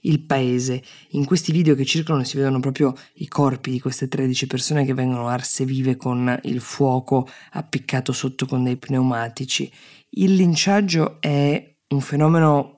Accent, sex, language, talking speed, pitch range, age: native, female, Italian, 155 wpm, 130-150 Hz, 20-39